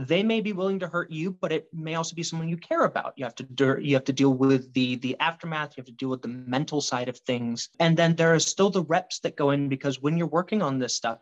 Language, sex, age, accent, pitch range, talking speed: English, male, 30-49, American, 130-175 Hz, 295 wpm